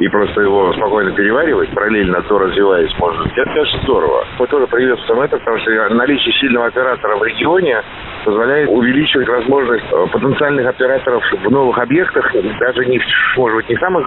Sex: male